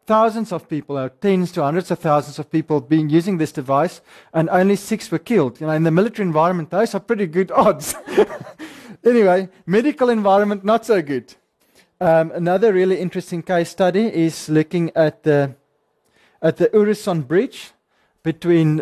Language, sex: English, male